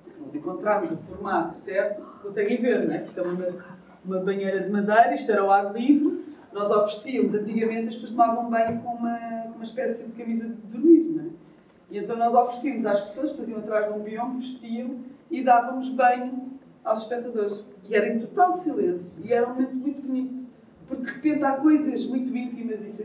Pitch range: 210-260 Hz